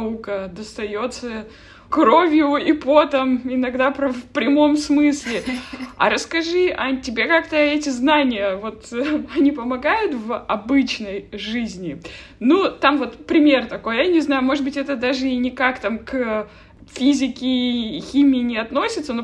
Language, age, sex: Russian, 20-39, female